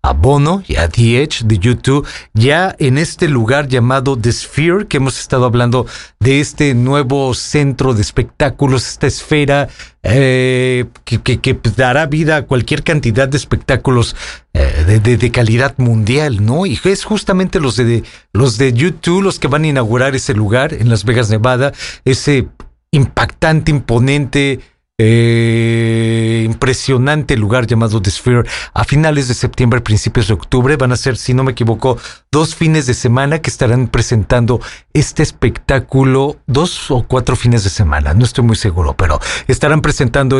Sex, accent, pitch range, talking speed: male, Mexican, 115-145 Hz, 160 wpm